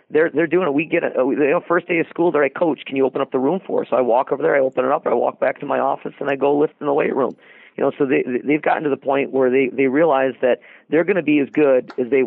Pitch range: 135-170 Hz